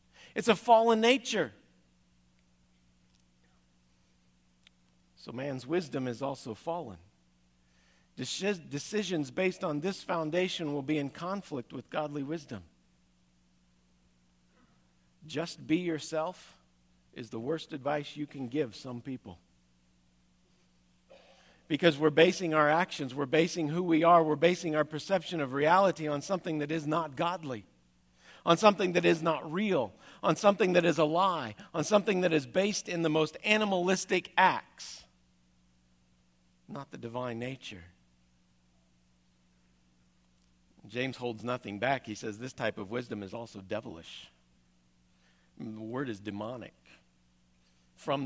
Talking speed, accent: 125 wpm, American